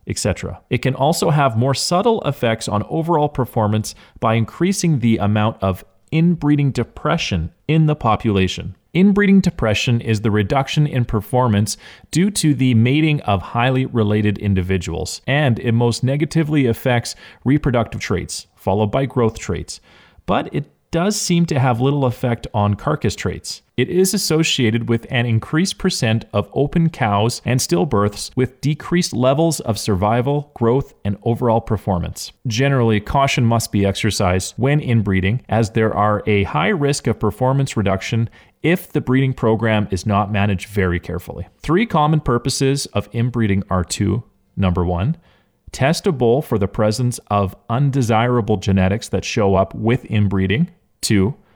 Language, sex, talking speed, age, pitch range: English, male, 150 wpm, 30-49, 105-140 Hz